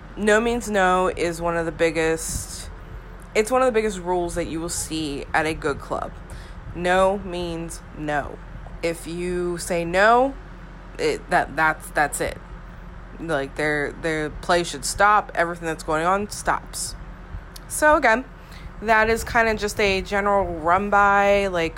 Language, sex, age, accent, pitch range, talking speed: English, female, 20-39, American, 170-210 Hz, 155 wpm